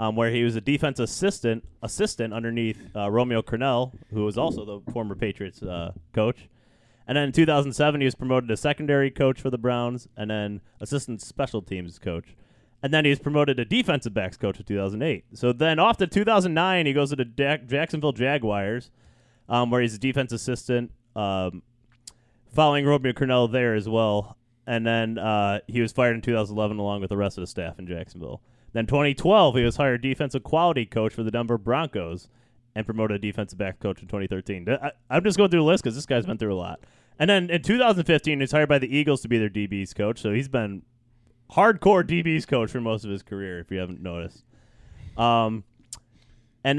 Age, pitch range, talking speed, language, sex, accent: 30-49, 105-140 Hz, 205 wpm, English, male, American